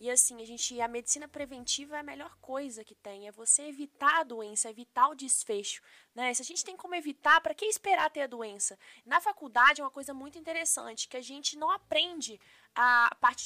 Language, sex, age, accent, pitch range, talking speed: Portuguese, female, 20-39, Brazilian, 240-320 Hz, 215 wpm